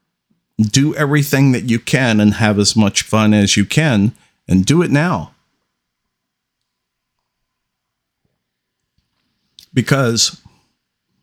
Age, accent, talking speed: 50-69, American, 95 wpm